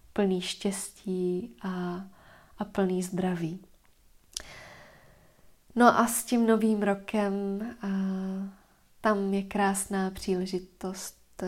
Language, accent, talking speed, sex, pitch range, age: Czech, native, 90 wpm, female, 190-205 Hz, 20-39